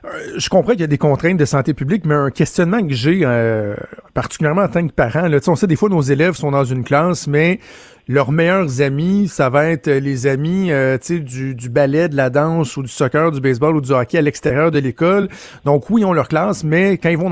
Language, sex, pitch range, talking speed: French, male, 140-175 Hz, 255 wpm